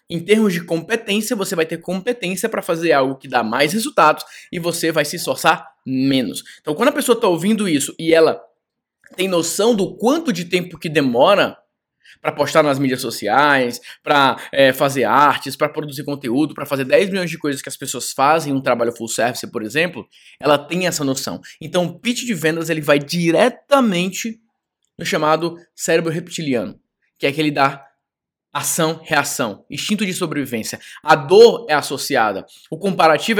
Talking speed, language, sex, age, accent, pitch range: 170 wpm, English, male, 20-39, Brazilian, 155-215 Hz